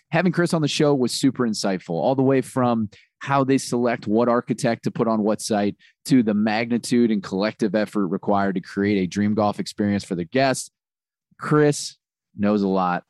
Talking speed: 190 wpm